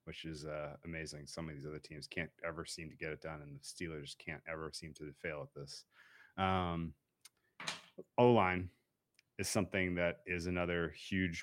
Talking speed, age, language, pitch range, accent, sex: 180 wpm, 30-49, English, 90-125 Hz, American, male